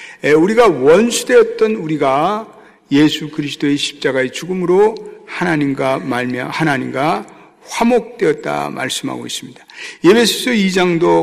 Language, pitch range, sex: Korean, 155-235 Hz, male